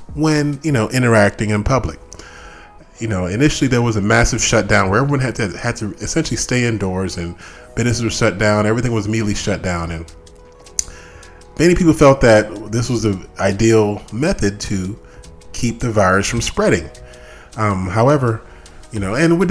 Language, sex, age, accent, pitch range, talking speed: English, male, 30-49, American, 90-120 Hz, 165 wpm